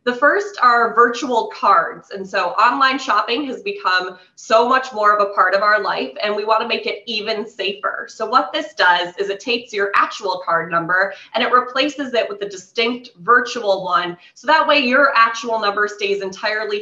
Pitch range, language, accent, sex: 195-250 Hz, English, American, female